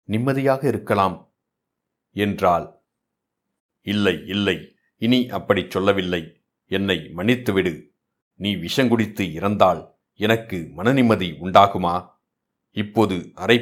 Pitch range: 95-115 Hz